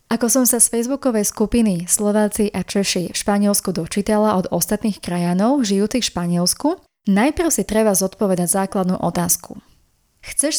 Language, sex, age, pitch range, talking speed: Slovak, female, 20-39, 185-240 Hz, 140 wpm